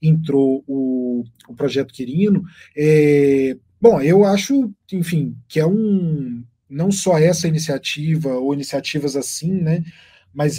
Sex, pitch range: male, 140-185 Hz